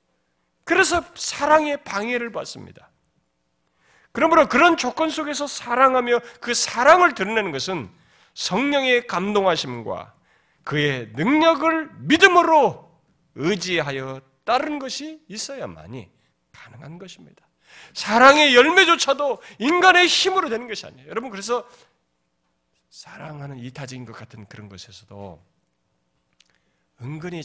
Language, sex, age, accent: Korean, male, 40-59, native